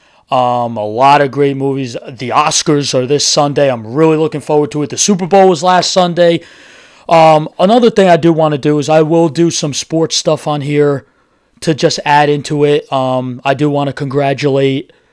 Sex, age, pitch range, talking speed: male, 30-49, 130-155 Hz, 200 wpm